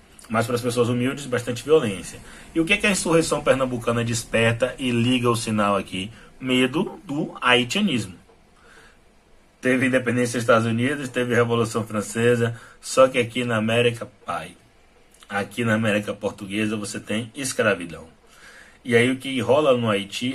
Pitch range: 100-120 Hz